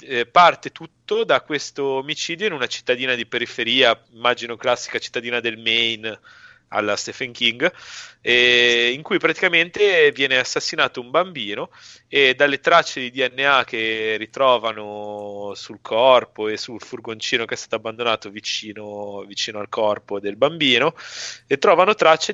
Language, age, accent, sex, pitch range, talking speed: Italian, 30-49, native, male, 110-135 Hz, 135 wpm